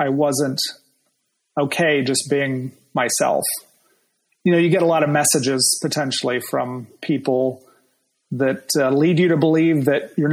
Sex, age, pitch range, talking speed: male, 30-49, 135-165 Hz, 145 wpm